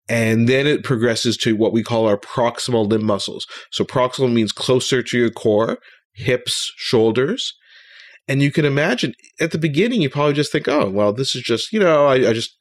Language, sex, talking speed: English, male, 200 wpm